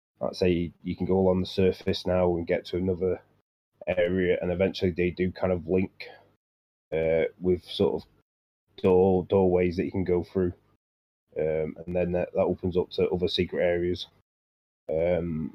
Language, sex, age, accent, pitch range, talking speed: English, male, 30-49, British, 85-100 Hz, 170 wpm